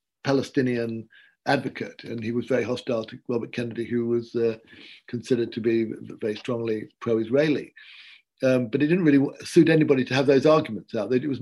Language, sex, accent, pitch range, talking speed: English, male, British, 115-140 Hz, 170 wpm